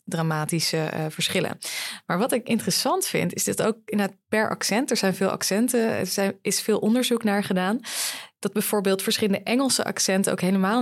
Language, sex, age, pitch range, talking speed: Dutch, female, 20-39, 175-215 Hz, 175 wpm